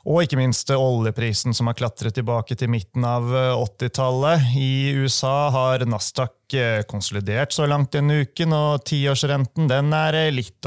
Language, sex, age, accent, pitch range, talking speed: English, male, 30-49, Swedish, 115-140 Hz, 145 wpm